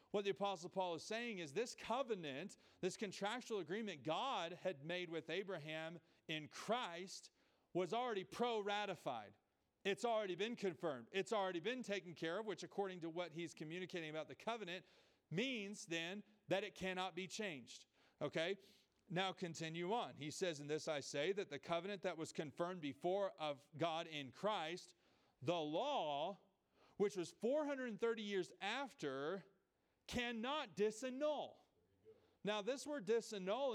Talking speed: 145 wpm